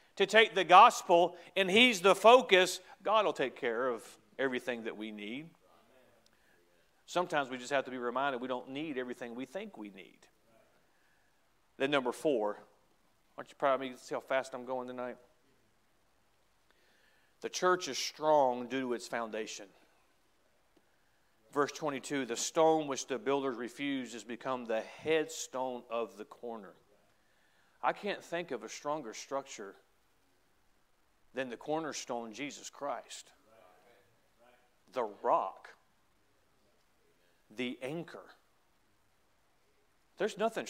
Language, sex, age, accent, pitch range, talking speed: English, male, 40-59, American, 115-155 Hz, 130 wpm